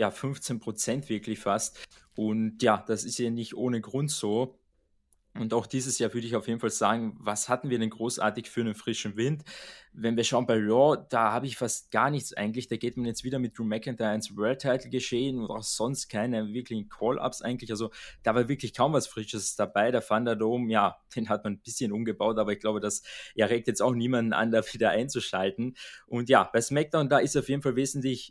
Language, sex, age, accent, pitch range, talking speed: German, male, 20-39, German, 110-125 Hz, 215 wpm